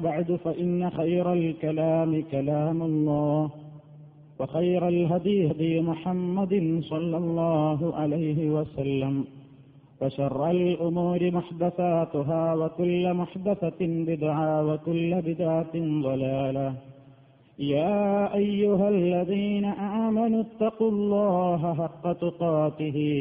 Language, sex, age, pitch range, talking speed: Malayalam, male, 50-69, 150-175 Hz, 80 wpm